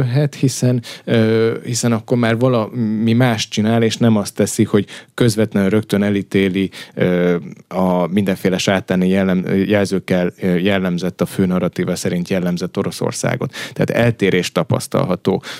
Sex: male